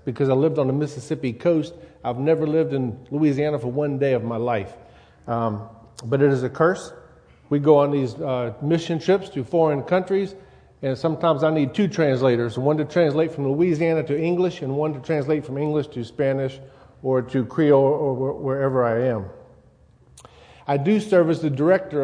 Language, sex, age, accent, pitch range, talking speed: English, male, 50-69, American, 125-165 Hz, 185 wpm